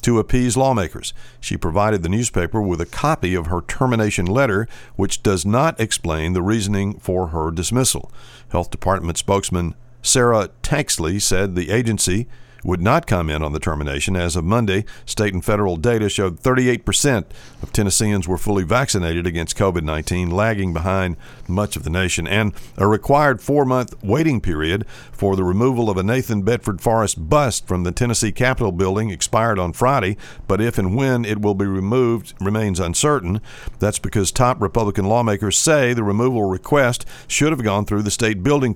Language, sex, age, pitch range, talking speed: English, male, 50-69, 95-120 Hz, 165 wpm